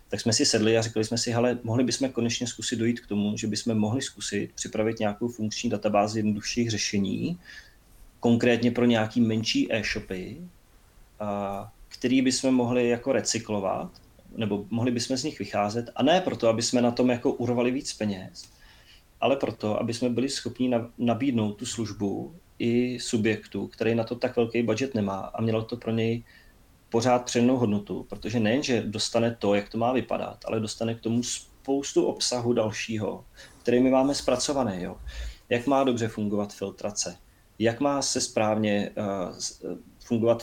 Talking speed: 165 wpm